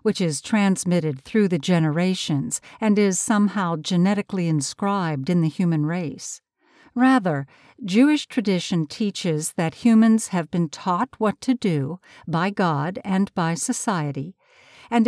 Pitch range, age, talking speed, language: 170-235 Hz, 60-79, 130 wpm, English